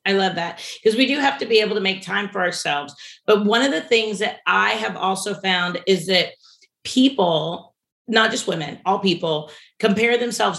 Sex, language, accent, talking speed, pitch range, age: female, English, American, 200 wpm, 185-240 Hz, 40-59